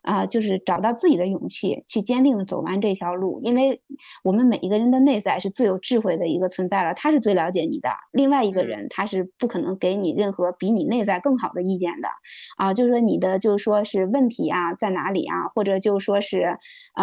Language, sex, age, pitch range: Chinese, female, 20-39, 190-240 Hz